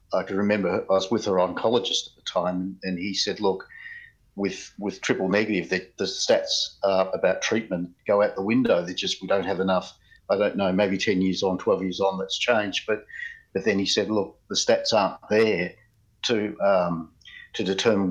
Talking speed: 200 wpm